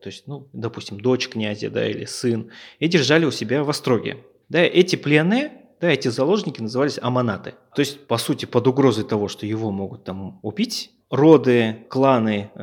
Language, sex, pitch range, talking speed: Russian, male, 105-130 Hz, 175 wpm